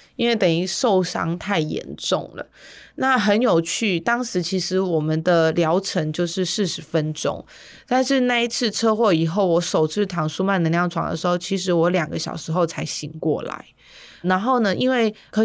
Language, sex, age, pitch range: Chinese, female, 20-39, 165-210 Hz